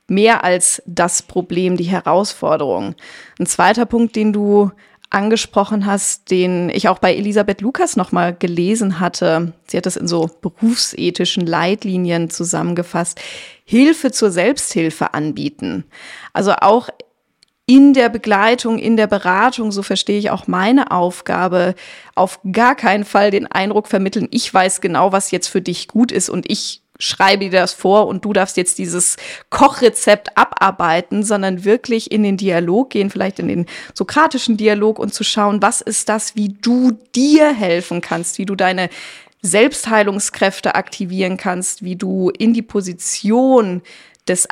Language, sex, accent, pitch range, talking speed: German, female, German, 185-225 Hz, 150 wpm